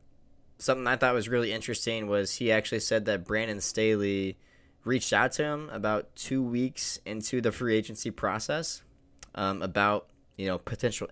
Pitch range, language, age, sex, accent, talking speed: 95-110 Hz, English, 10-29, male, American, 160 wpm